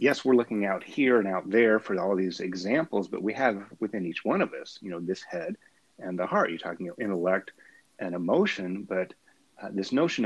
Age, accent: 40-59, American